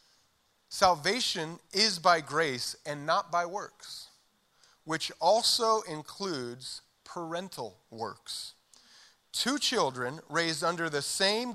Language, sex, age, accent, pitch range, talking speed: English, male, 40-59, American, 150-205 Hz, 100 wpm